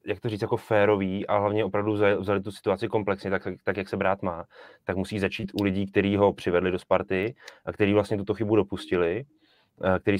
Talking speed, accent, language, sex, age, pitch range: 200 wpm, native, Czech, male, 20-39, 95-110 Hz